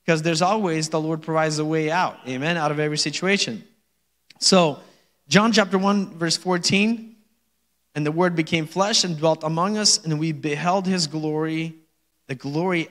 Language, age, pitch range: English, 30-49, 155-205 Hz